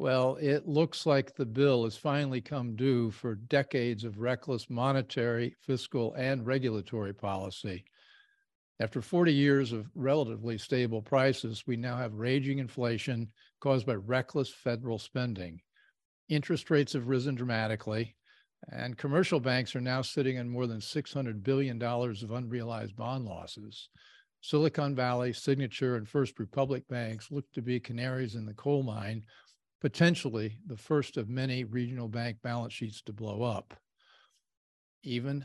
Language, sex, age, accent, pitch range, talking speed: English, male, 50-69, American, 115-140 Hz, 140 wpm